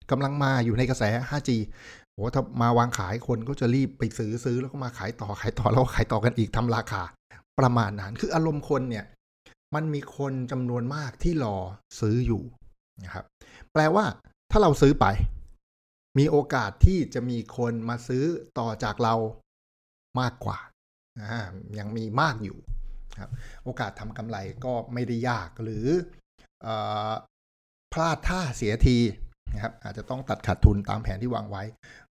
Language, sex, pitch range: Thai, male, 105-130 Hz